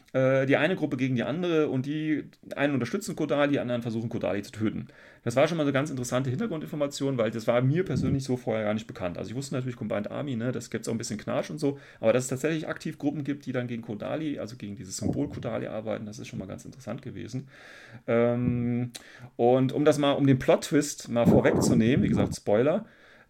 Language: German